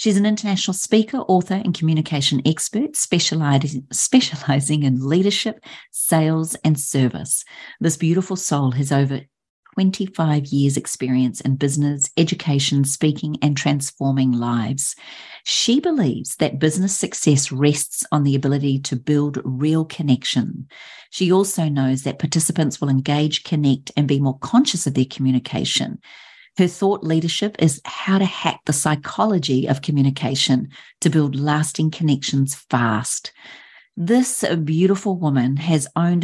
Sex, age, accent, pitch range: female, 40-59, Australian, 140-170 Hz